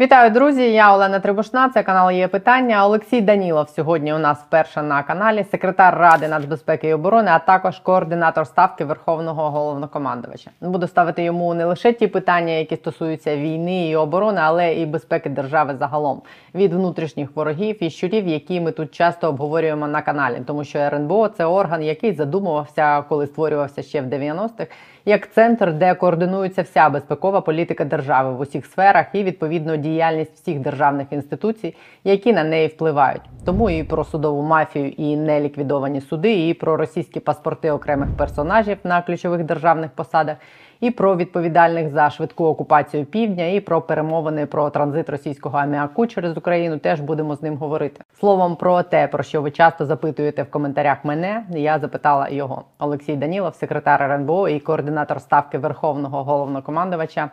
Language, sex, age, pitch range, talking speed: Ukrainian, female, 20-39, 150-180 Hz, 160 wpm